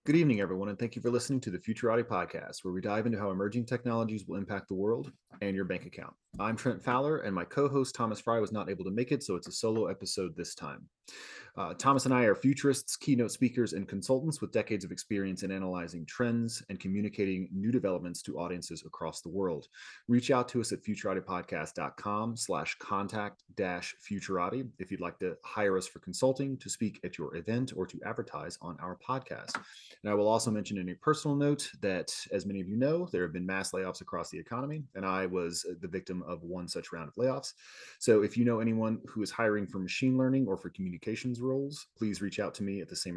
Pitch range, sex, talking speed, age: 95-125 Hz, male, 220 wpm, 30-49